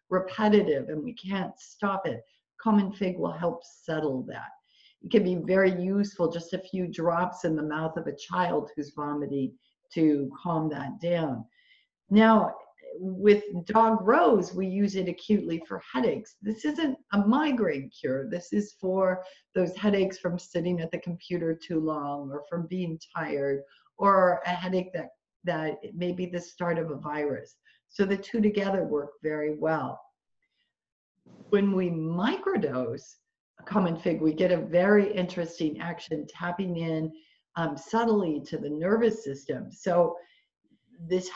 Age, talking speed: 50-69, 150 wpm